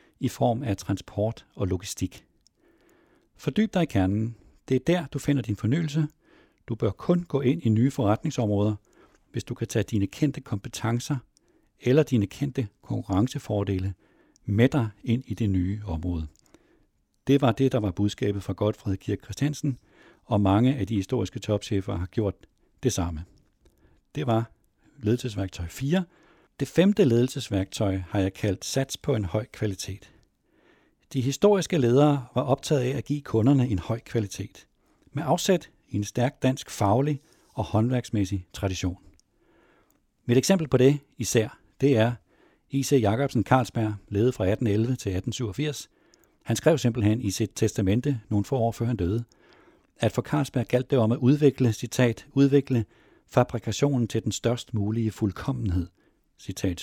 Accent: native